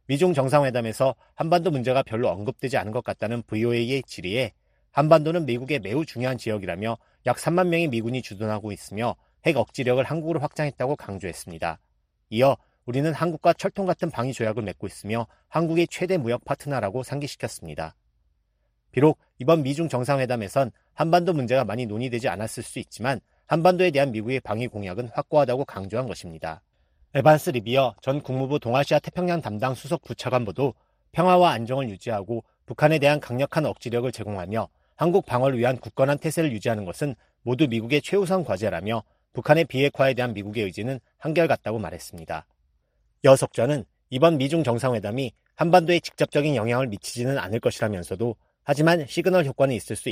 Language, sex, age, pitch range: Korean, male, 40-59, 110-150 Hz